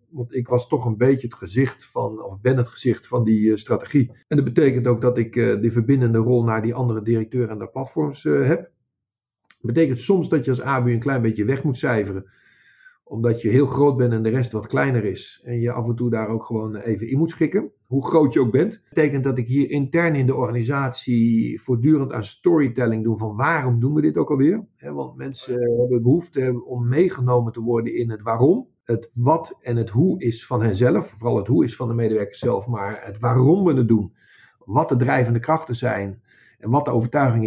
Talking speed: 220 wpm